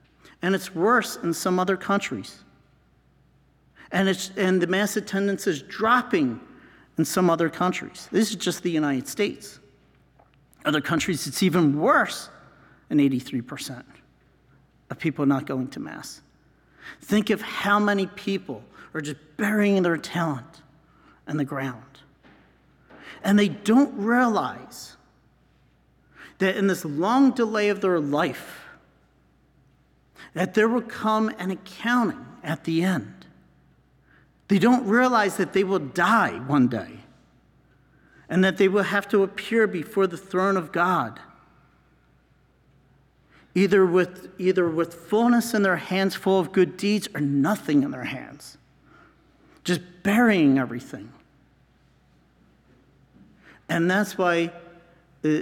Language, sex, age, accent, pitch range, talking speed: English, male, 50-69, American, 150-205 Hz, 125 wpm